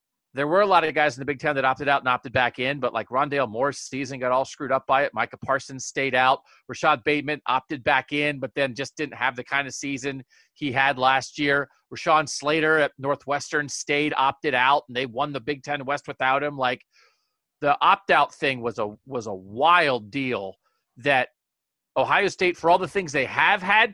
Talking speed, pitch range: 215 wpm, 130-170 Hz